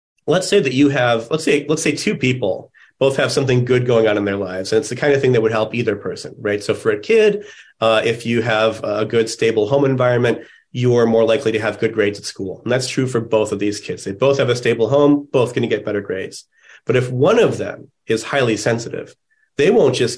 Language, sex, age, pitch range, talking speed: English, male, 30-49, 110-145 Hz, 255 wpm